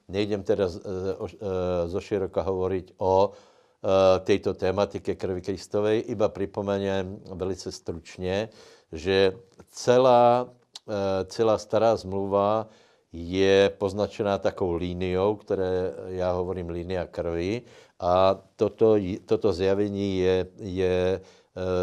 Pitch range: 95-105 Hz